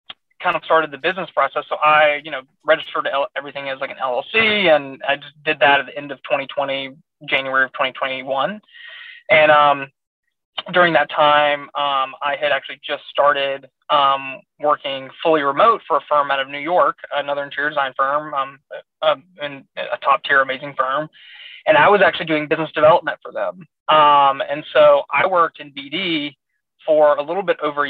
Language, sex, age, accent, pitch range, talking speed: English, male, 20-39, American, 140-160 Hz, 185 wpm